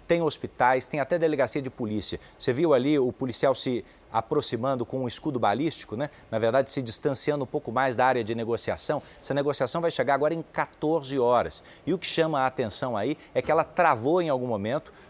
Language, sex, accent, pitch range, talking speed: Portuguese, male, Brazilian, 130-170 Hz, 205 wpm